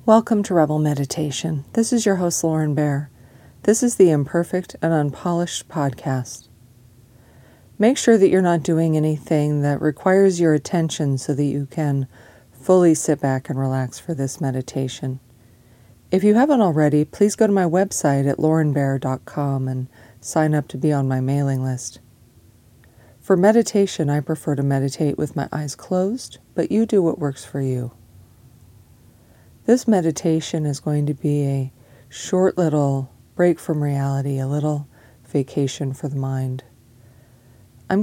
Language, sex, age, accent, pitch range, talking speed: English, female, 40-59, American, 125-160 Hz, 150 wpm